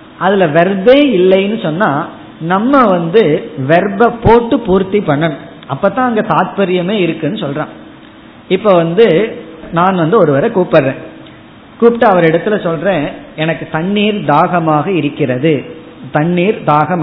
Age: 20-39